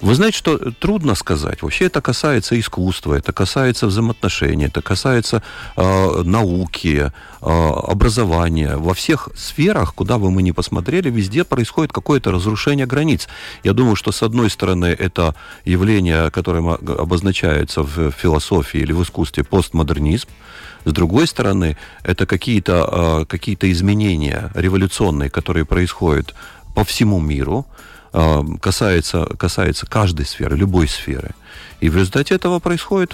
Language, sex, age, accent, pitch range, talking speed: Russian, male, 40-59, native, 80-115 Hz, 130 wpm